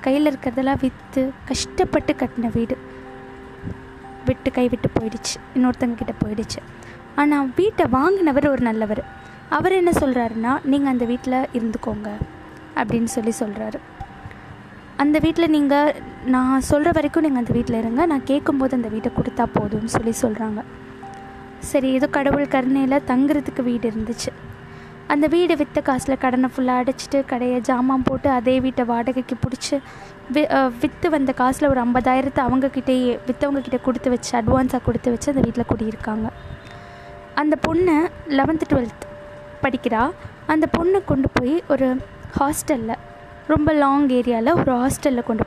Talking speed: 130 wpm